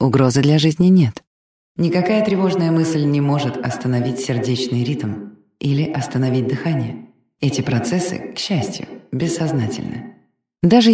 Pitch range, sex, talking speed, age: 125-175 Hz, female, 115 wpm, 20-39